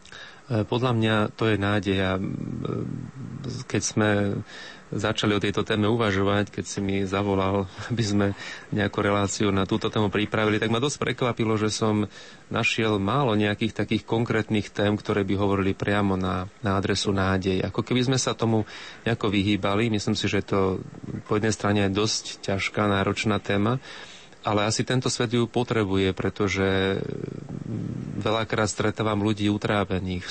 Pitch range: 100-110 Hz